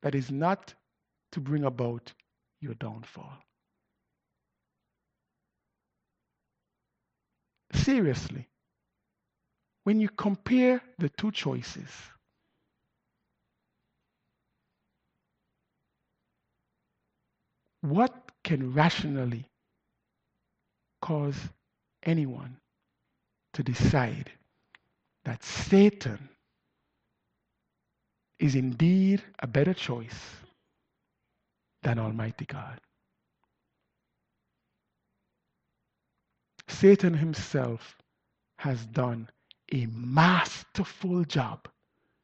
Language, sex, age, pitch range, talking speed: English, male, 60-79, 130-190 Hz, 55 wpm